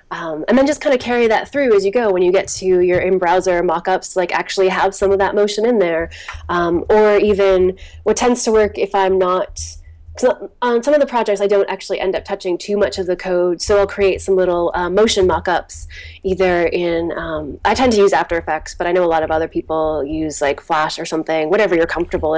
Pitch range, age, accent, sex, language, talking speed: 170-200 Hz, 20-39, American, female, English, 245 wpm